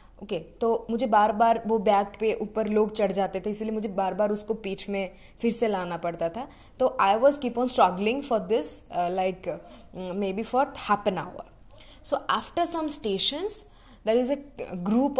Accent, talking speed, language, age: native, 185 wpm, Hindi, 20-39